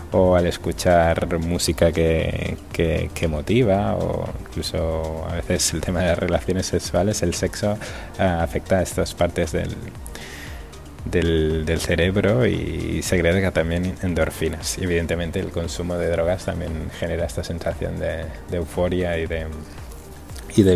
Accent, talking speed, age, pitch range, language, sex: Spanish, 135 wpm, 20-39, 85-100 Hz, Spanish, male